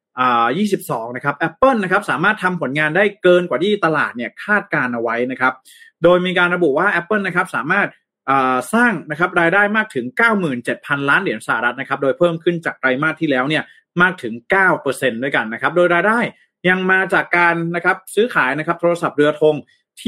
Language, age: Thai, 30-49